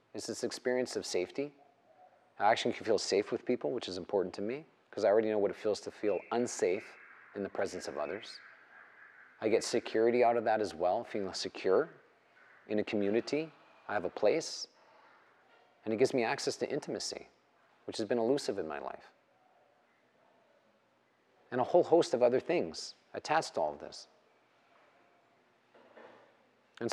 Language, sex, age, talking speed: English, male, 40-59, 170 wpm